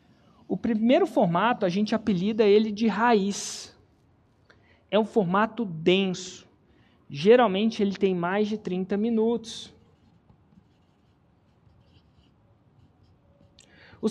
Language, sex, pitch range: Portuguese, male, 200-250 Hz